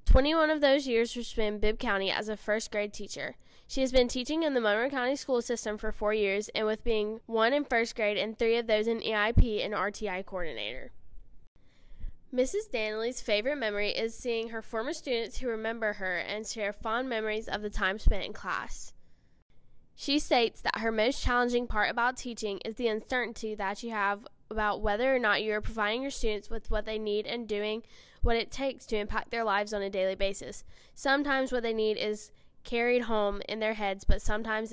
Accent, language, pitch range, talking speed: American, English, 210-245 Hz, 205 wpm